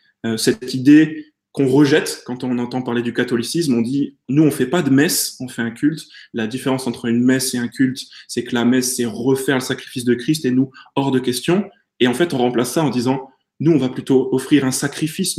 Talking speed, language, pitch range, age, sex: 240 wpm, French, 120-145 Hz, 20-39, male